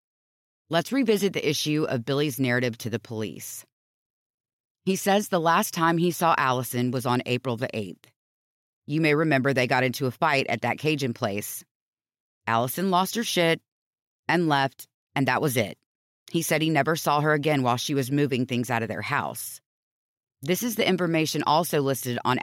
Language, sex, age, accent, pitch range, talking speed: English, female, 30-49, American, 125-165 Hz, 180 wpm